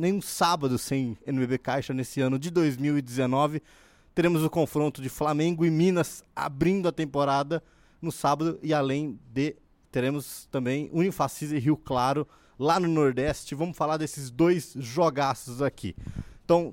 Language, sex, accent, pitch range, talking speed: Portuguese, male, Brazilian, 125-165 Hz, 150 wpm